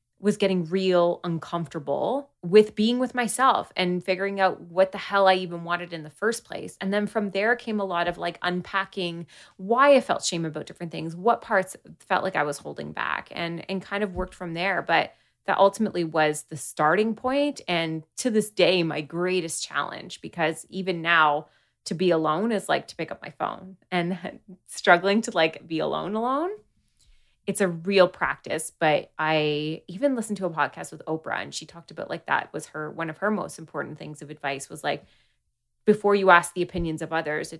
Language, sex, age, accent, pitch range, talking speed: English, female, 20-39, American, 155-195 Hz, 200 wpm